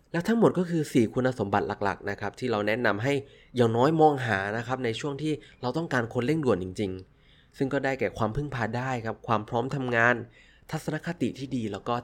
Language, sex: Thai, male